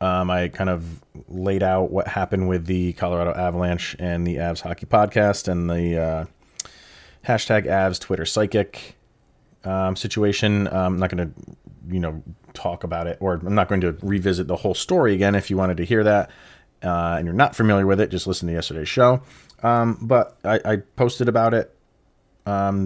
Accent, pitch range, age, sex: American, 90-115 Hz, 30-49, male